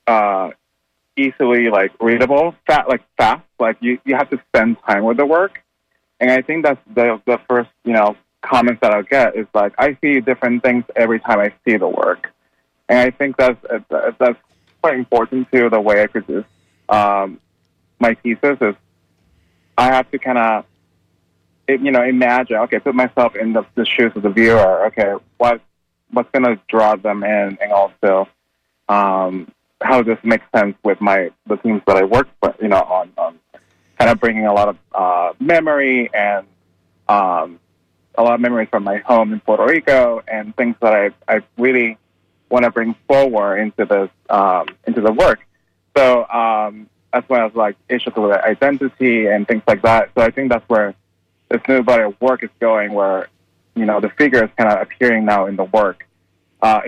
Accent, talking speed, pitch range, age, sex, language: American, 190 wpm, 95-125 Hz, 30-49, male, English